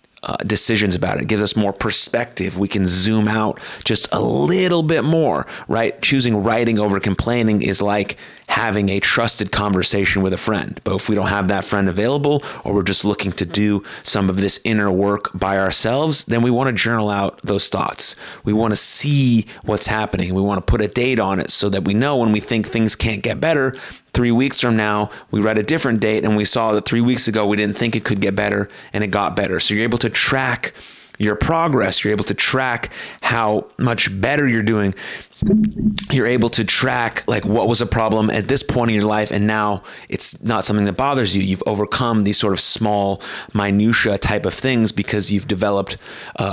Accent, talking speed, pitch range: American, 215 wpm, 100-115 Hz